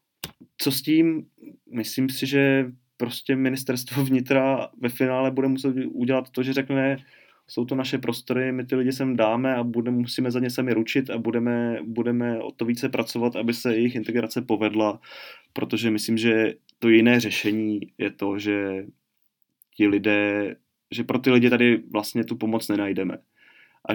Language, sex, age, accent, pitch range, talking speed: Czech, male, 20-39, native, 105-130 Hz, 165 wpm